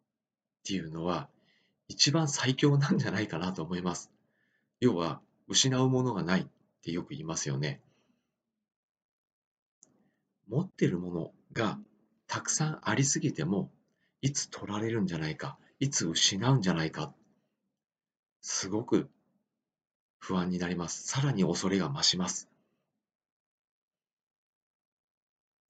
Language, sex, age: Japanese, male, 40-59